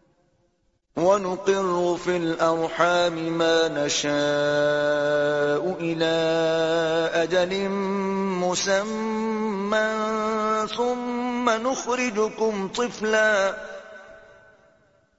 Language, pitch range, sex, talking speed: Urdu, 165-225 Hz, male, 45 wpm